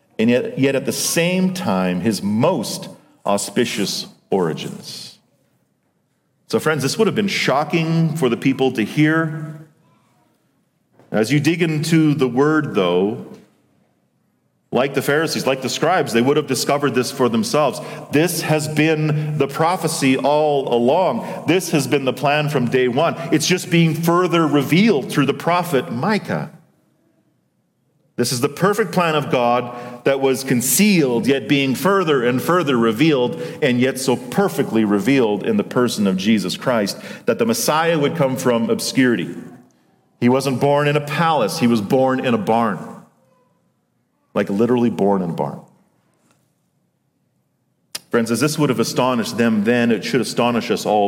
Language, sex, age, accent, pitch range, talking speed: English, male, 40-59, American, 125-165 Hz, 155 wpm